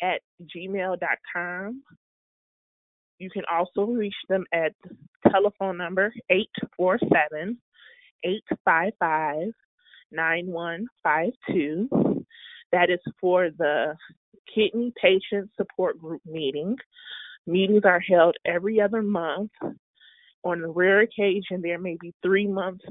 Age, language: 20-39, English